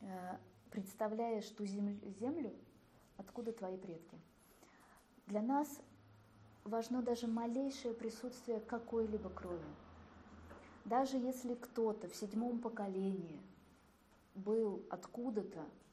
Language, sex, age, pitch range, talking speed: Russian, female, 20-39, 180-230 Hz, 85 wpm